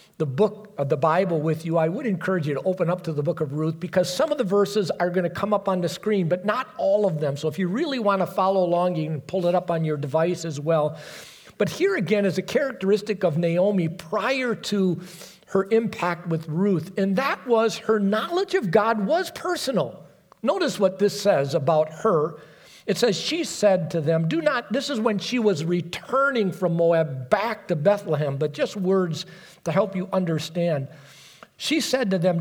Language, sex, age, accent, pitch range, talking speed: English, male, 50-69, American, 165-205 Hz, 210 wpm